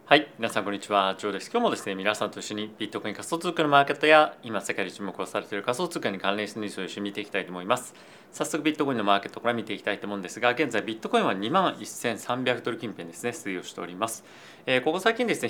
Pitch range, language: 100-140 Hz, Japanese